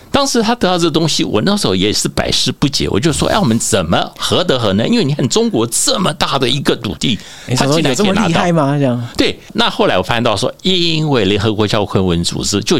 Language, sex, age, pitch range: Chinese, male, 60-79, 100-145 Hz